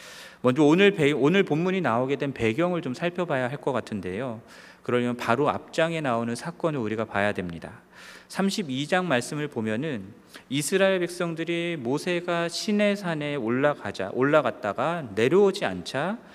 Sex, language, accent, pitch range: male, Korean, native, 125-175 Hz